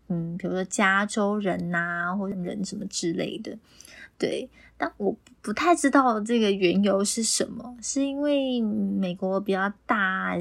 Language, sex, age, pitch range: Chinese, female, 20-39, 195-245 Hz